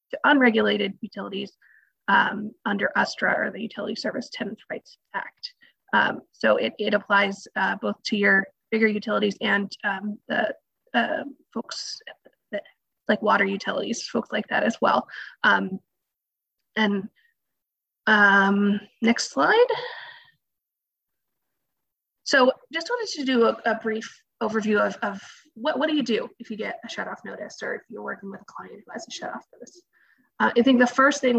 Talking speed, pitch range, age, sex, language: 160 wpm, 200-255 Hz, 20-39, female, English